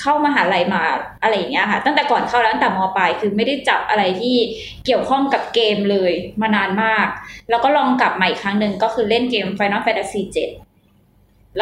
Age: 20-39